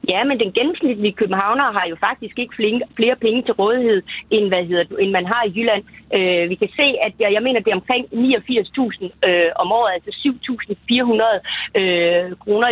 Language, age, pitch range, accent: Danish, 30-49, 195-245 Hz, native